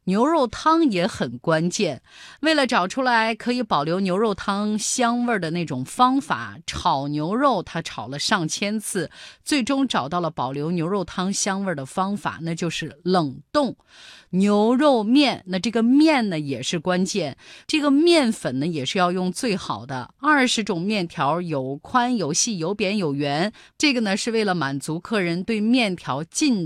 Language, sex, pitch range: Chinese, female, 165-245 Hz